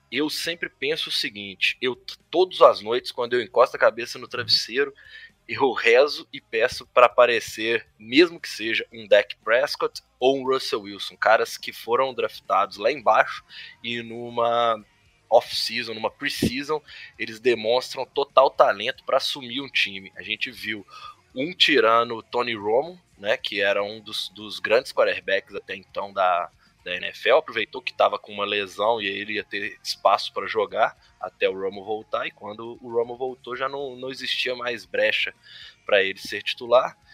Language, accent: Portuguese, Brazilian